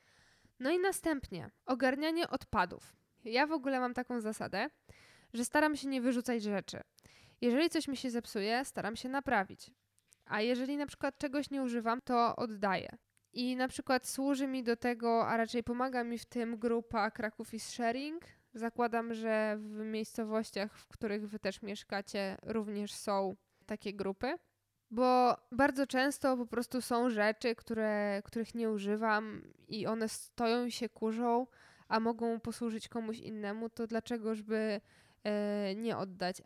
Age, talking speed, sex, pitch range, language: 10-29, 145 wpm, female, 215-255 Hz, Polish